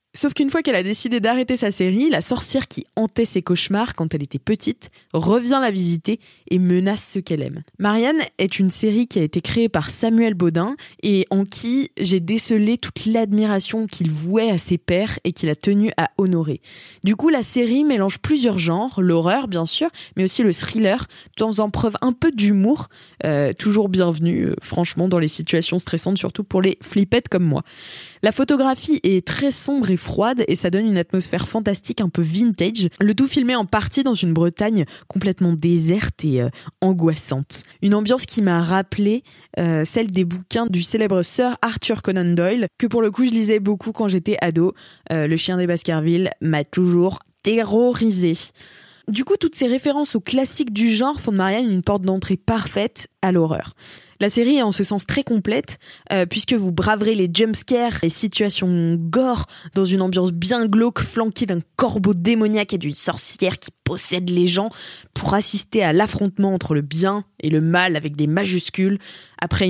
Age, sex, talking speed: 20-39, female, 185 wpm